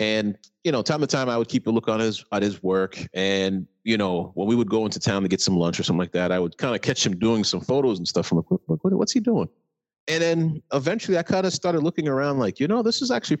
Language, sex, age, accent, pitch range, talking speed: English, male, 30-49, American, 95-115 Hz, 300 wpm